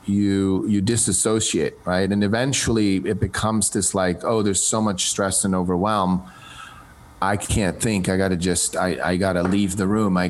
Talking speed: 175 wpm